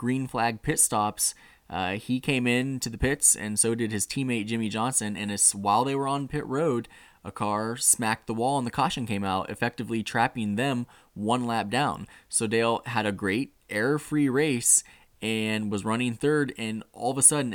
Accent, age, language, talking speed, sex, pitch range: American, 10-29, English, 200 wpm, male, 110-130 Hz